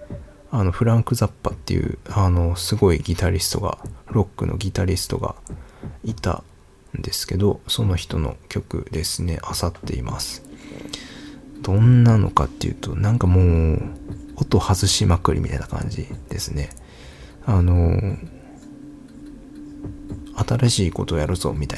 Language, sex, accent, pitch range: Japanese, male, native, 90-120 Hz